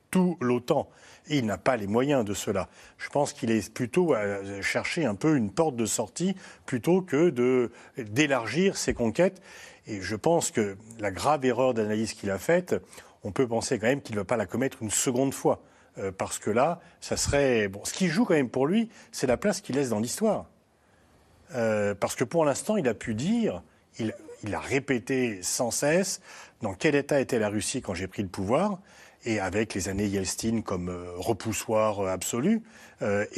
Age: 40-59